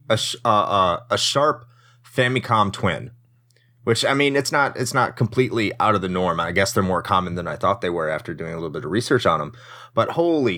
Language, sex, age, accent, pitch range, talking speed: English, male, 30-49, American, 100-125 Hz, 235 wpm